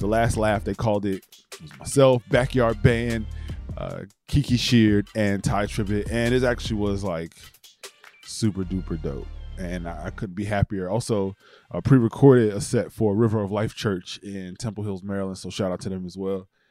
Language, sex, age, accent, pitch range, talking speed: English, male, 20-39, American, 100-130 Hz, 190 wpm